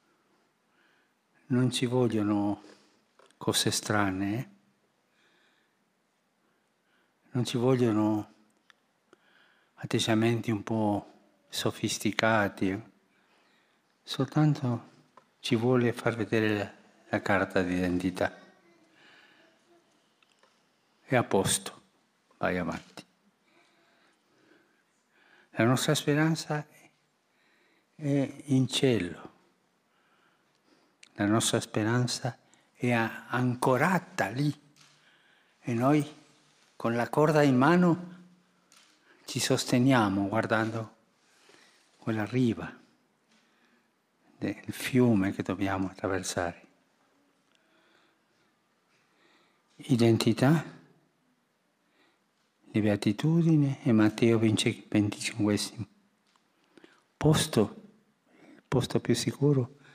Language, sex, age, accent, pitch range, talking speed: Italian, male, 60-79, native, 105-140 Hz, 70 wpm